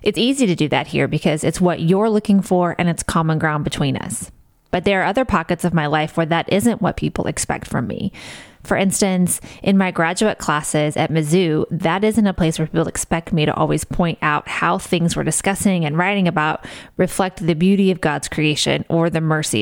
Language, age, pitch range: English, 20-39, 165-210 Hz